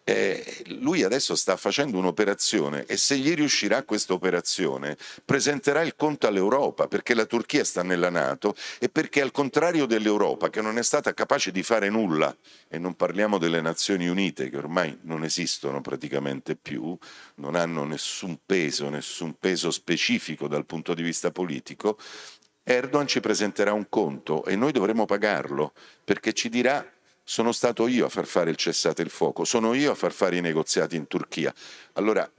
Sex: male